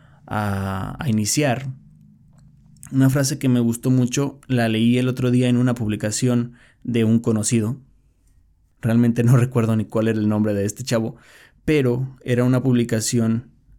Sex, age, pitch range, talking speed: male, 20-39, 110-135 Hz, 150 wpm